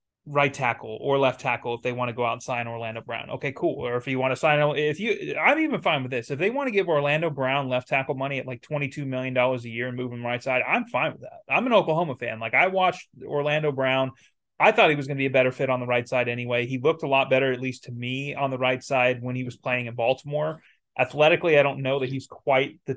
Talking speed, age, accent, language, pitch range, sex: 275 wpm, 20-39, American, English, 125-150 Hz, male